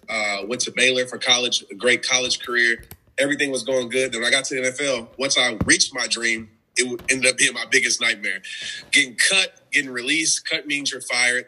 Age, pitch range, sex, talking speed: 20-39, 120-145 Hz, male, 215 wpm